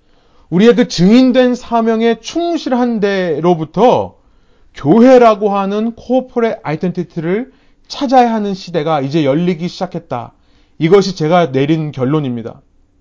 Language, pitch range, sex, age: Korean, 175-240 Hz, male, 30-49